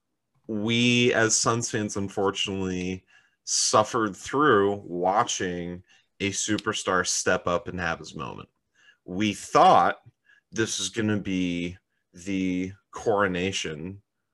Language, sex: English, male